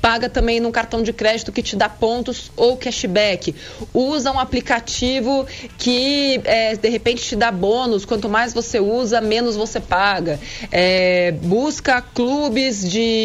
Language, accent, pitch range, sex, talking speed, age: Portuguese, Brazilian, 195-245 Hz, female, 140 wpm, 20-39